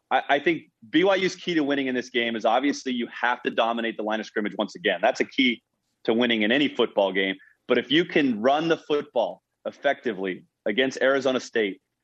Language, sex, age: English, male, 30-49